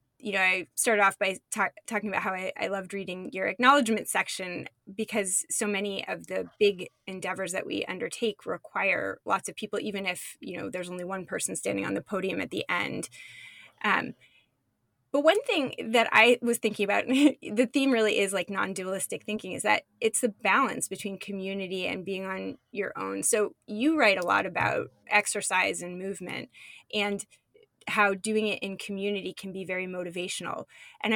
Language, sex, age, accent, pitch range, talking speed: English, female, 20-39, American, 190-240 Hz, 180 wpm